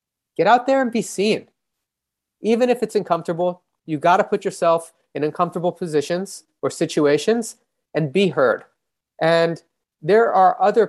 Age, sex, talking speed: 30-49, male, 145 wpm